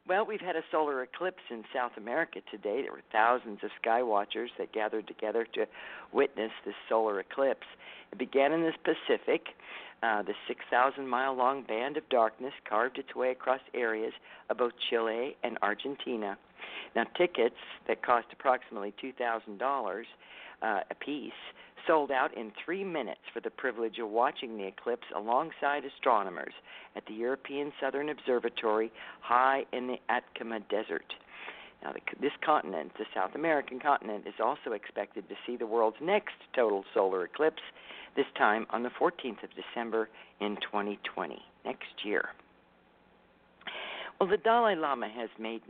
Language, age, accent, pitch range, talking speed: English, 50-69, American, 110-145 Hz, 150 wpm